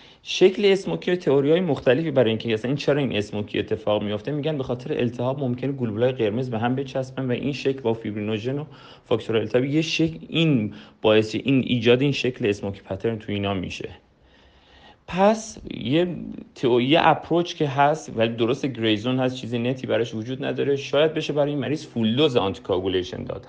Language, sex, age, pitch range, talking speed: Persian, male, 40-59, 110-140 Hz, 175 wpm